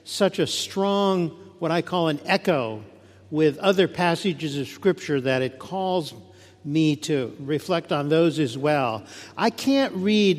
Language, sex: English, male